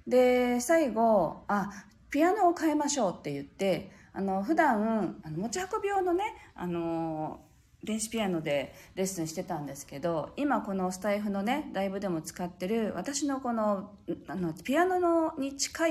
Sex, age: female, 40-59